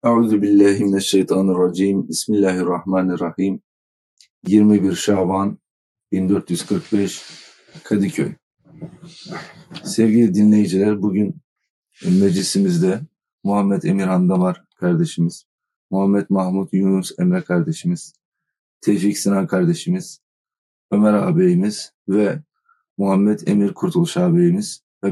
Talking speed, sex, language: 75 wpm, male, Turkish